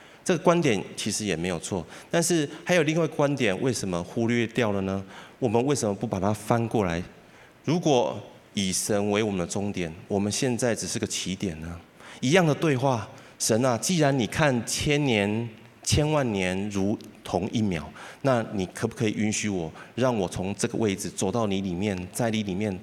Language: Chinese